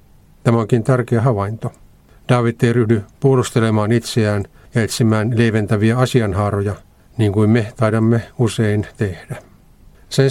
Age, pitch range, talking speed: 50-69, 105-125 Hz, 115 wpm